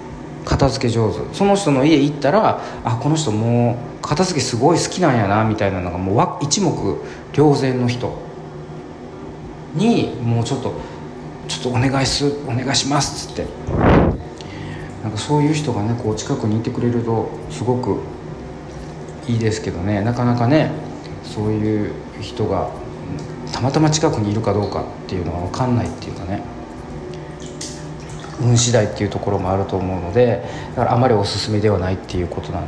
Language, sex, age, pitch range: Japanese, male, 40-59, 100-130 Hz